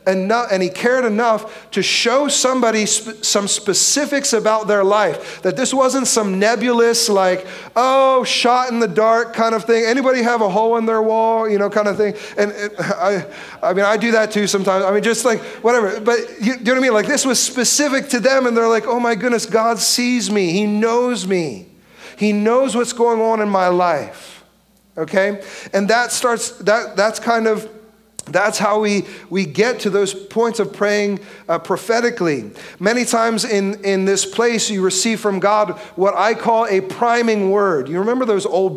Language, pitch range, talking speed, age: English, 185-230 Hz, 200 wpm, 40-59